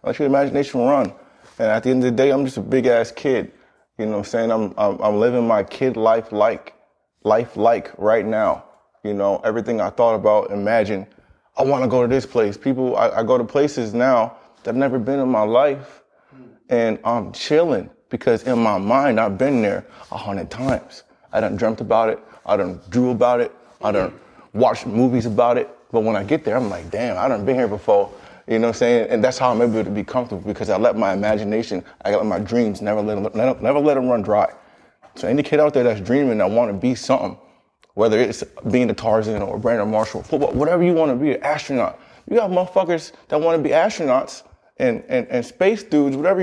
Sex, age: male, 20-39